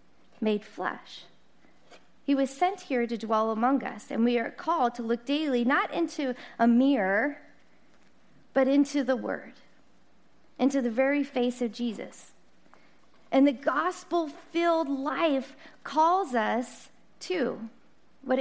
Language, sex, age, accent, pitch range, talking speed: English, female, 40-59, American, 220-290 Hz, 125 wpm